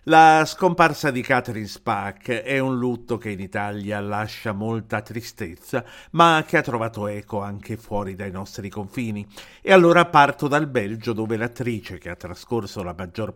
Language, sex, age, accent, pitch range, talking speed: Italian, male, 50-69, native, 110-150 Hz, 160 wpm